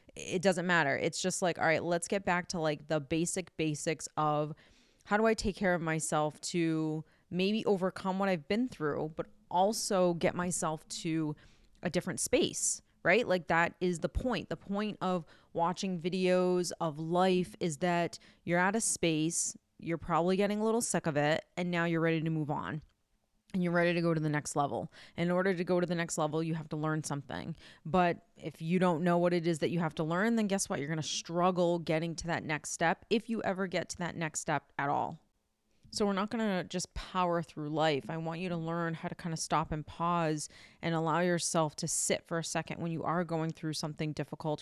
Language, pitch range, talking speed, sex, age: English, 160-185 Hz, 220 wpm, female, 20-39